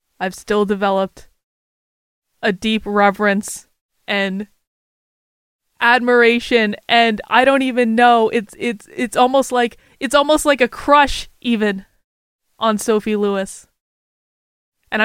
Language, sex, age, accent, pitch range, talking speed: English, female, 20-39, American, 195-240 Hz, 110 wpm